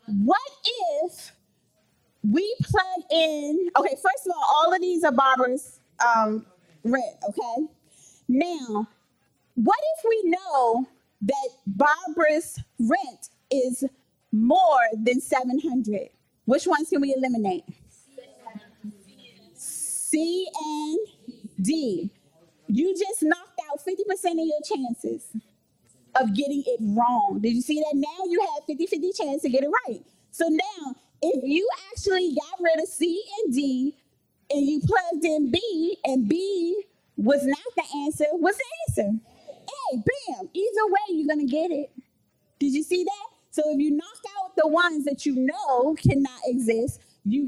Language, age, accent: English, 30-49, American